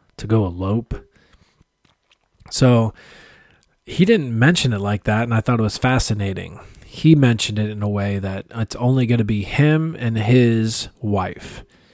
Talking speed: 160 wpm